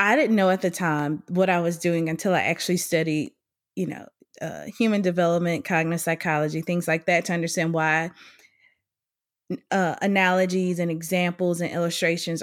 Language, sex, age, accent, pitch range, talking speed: English, female, 20-39, American, 170-195 Hz, 160 wpm